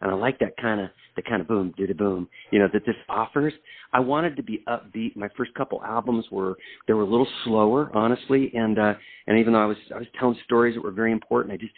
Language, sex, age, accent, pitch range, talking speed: English, male, 50-69, American, 95-120 Hz, 260 wpm